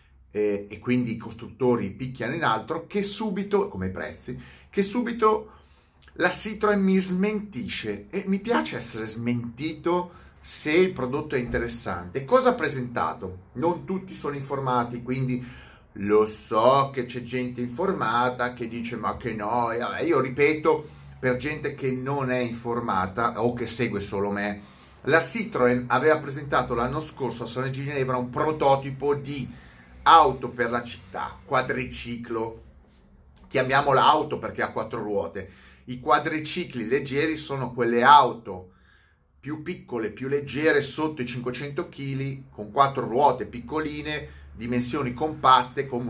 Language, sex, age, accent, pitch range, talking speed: Italian, male, 30-49, native, 115-155 Hz, 135 wpm